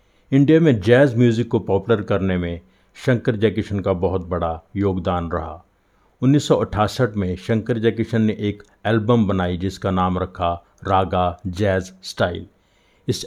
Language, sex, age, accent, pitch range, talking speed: Hindi, male, 50-69, native, 95-115 Hz, 135 wpm